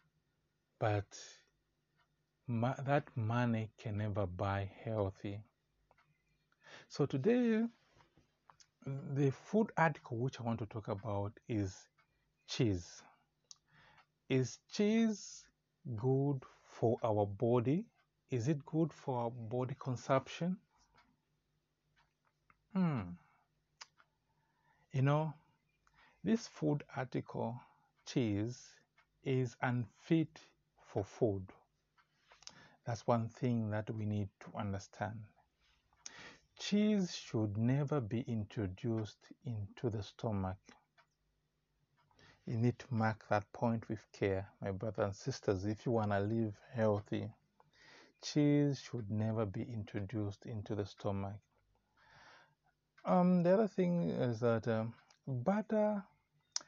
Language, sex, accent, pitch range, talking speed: English, male, Nigerian, 105-140 Hz, 100 wpm